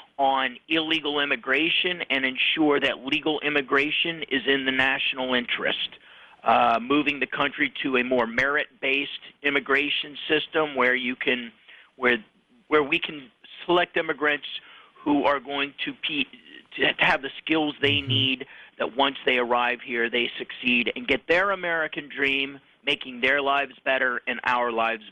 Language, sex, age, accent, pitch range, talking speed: English, male, 40-59, American, 130-150 Hz, 145 wpm